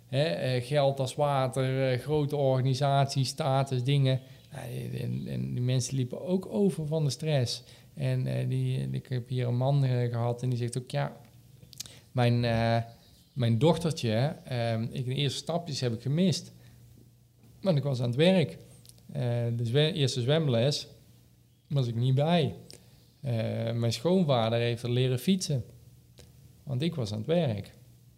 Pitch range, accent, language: 115-145 Hz, Dutch, Dutch